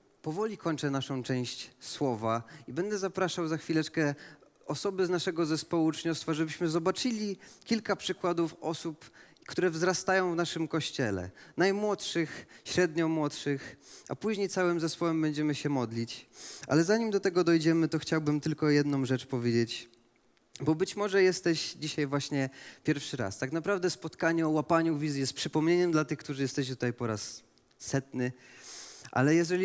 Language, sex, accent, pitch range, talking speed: Polish, male, native, 140-175 Hz, 145 wpm